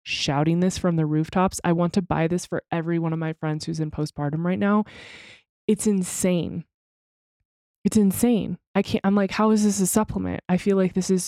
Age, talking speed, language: 20-39, 205 wpm, English